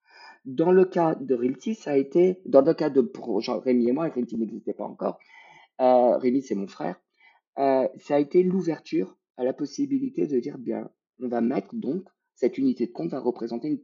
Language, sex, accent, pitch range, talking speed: French, male, French, 125-180 Hz, 210 wpm